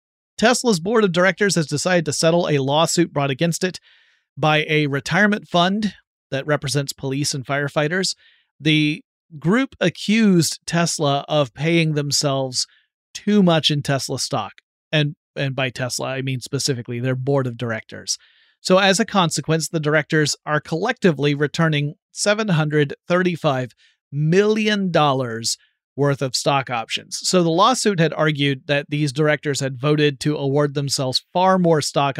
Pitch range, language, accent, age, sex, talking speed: 140-170 Hz, English, American, 30-49, male, 145 wpm